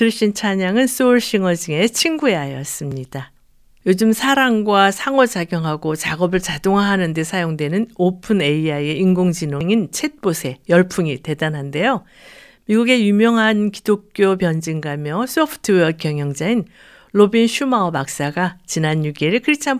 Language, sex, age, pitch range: Korean, female, 50-69, 155-215 Hz